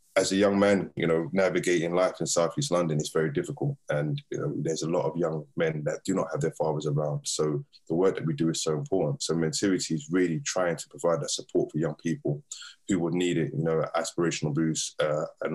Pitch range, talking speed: 80-85 Hz, 240 wpm